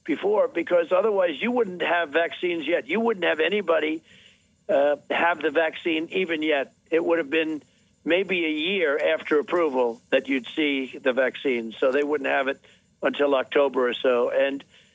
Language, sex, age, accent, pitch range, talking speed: English, male, 60-79, American, 140-180 Hz, 170 wpm